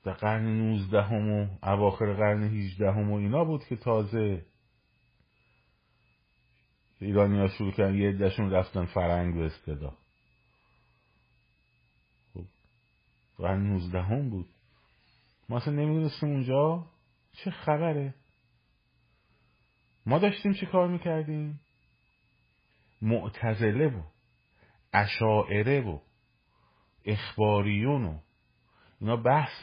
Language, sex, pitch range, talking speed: Persian, male, 95-130 Hz, 85 wpm